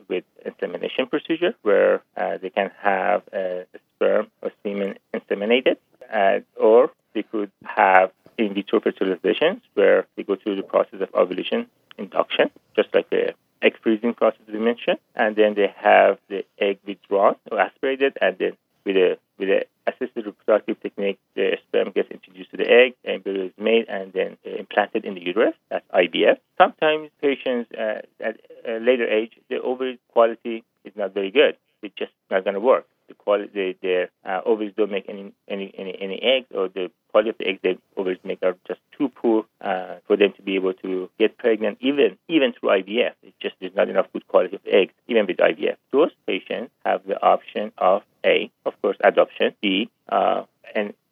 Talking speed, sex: 185 wpm, male